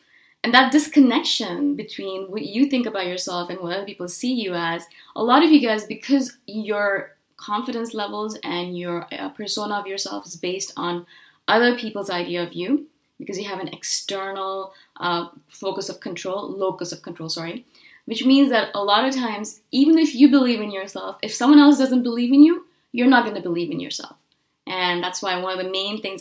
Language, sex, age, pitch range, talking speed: English, female, 20-39, 185-260 Hz, 195 wpm